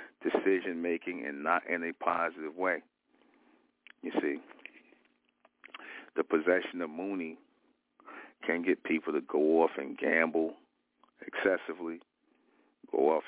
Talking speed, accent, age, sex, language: 110 wpm, American, 50-69, male, English